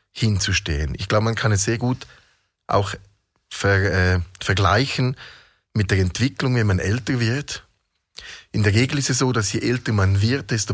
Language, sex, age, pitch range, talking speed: German, male, 30-49, 100-130 Hz, 175 wpm